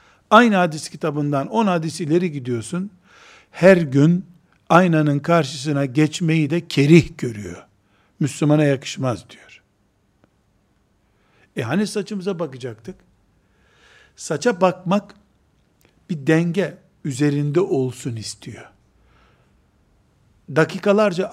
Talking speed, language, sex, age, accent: 85 wpm, Turkish, male, 60-79, native